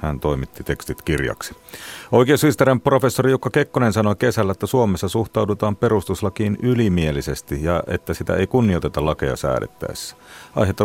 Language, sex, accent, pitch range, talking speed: Finnish, male, native, 85-115 Hz, 125 wpm